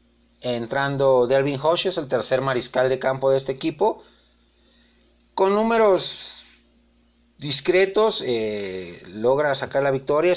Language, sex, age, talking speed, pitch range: Spanish, male, 40-59, 110 wpm, 100-170 Hz